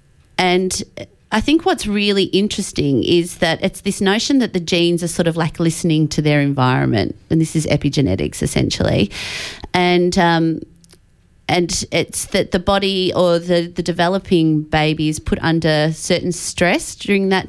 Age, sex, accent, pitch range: 30-49, female, Australian, 150-180 Hz